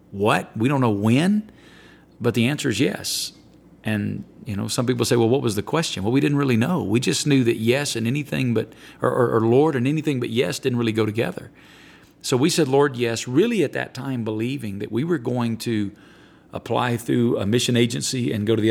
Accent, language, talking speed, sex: American, English, 215 wpm, male